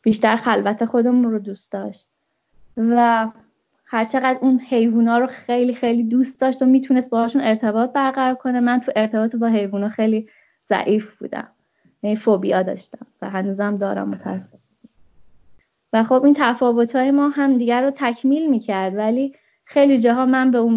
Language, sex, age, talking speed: Persian, female, 20-39, 160 wpm